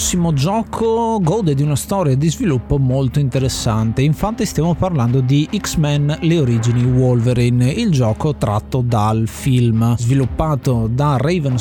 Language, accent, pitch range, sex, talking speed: Italian, native, 120-155 Hz, male, 140 wpm